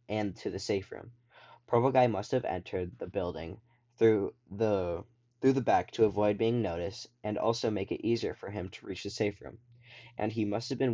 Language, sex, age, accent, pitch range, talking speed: English, male, 10-29, American, 95-120 Hz, 210 wpm